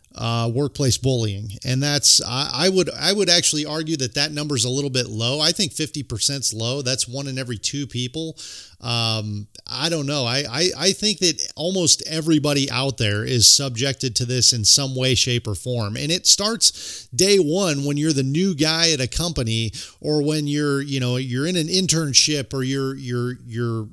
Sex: male